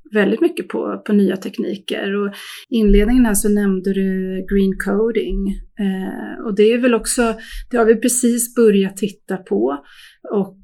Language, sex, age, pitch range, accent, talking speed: Swedish, female, 30-49, 195-230 Hz, native, 160 wpm